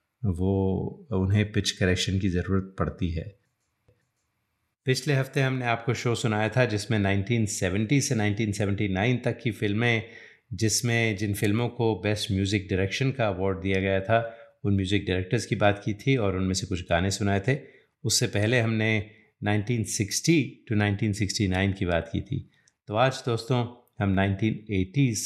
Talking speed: 150 wpm